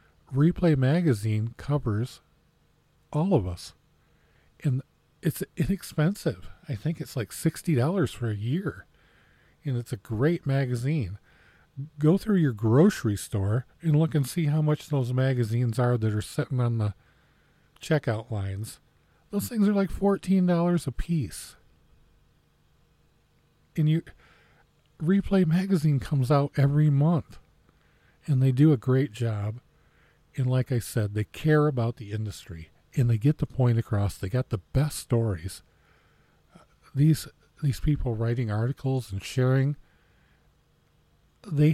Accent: American